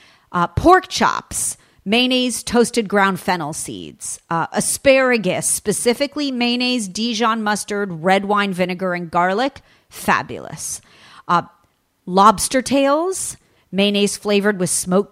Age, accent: 40-59, American